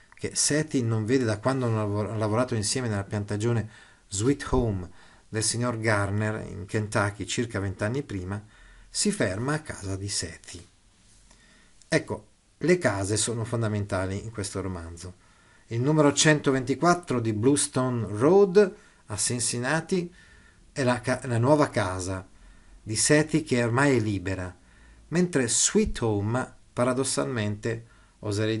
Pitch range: 100-135 Hz